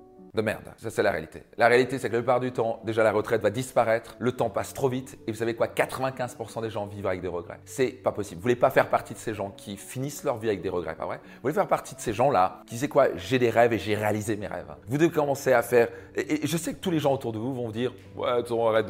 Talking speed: 305 wpm